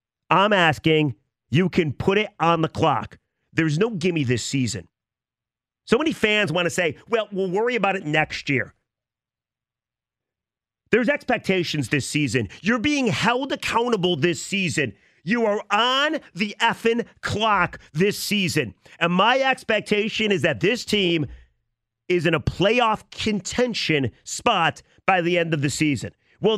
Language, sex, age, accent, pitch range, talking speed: English, male, 40-59, American, 155-225 Hz, 145 wpm